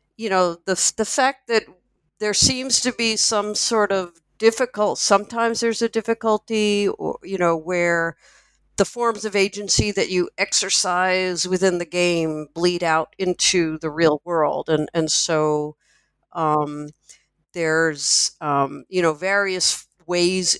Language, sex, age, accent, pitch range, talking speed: English, female, 50-69, American, 155-200 Hz, 140 wpm